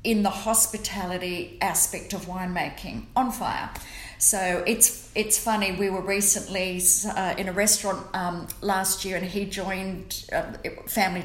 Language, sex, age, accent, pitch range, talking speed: English, female, 40-59, Australian, 180-225 Hz, 145 wpm